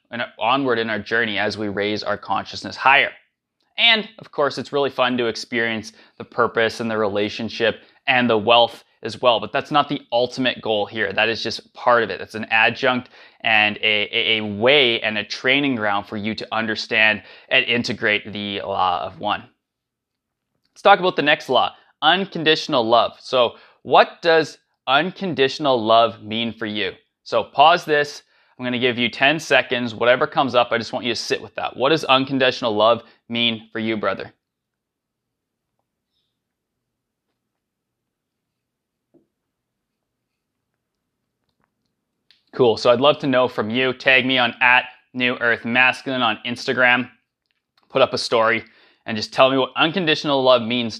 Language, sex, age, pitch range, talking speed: English, male, 20-39, 110-130 Hz, 160 wpm